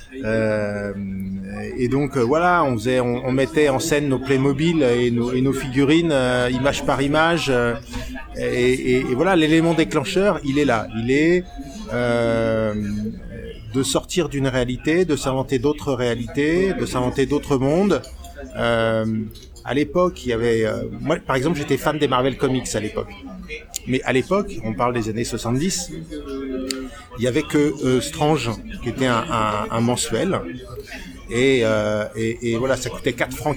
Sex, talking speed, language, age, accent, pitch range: male, 165 wpm, French, 30-49, French, 115-145 Hz